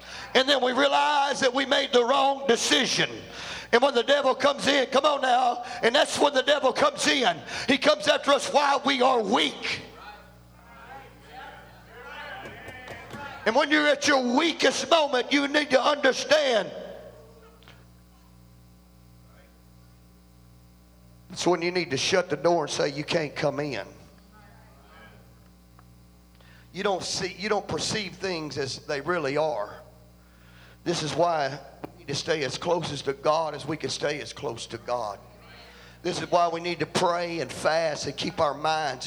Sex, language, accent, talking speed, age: male, English, American, 155 wpm, 40-59